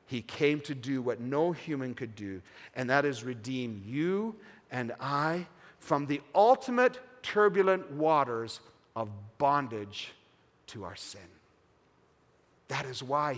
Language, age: English, 50-69